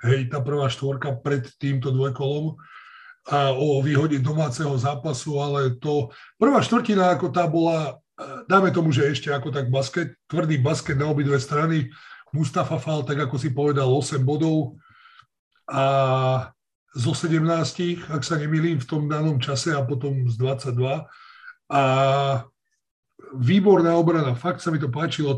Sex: male